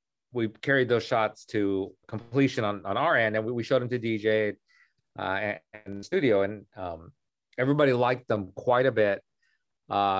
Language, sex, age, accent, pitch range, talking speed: English, male, 40-59, American, 105-125 Hz, 180 wpm